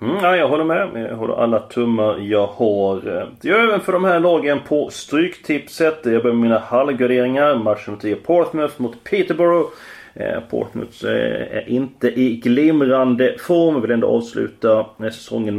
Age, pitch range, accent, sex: 30-49, 115-160 Hz, native, male